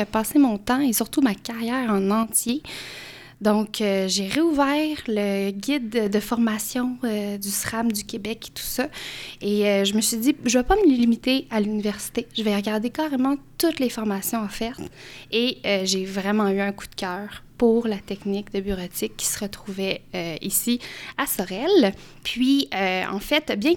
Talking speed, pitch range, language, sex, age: 185 wpm, 205-250 Hz, French, female, 20-39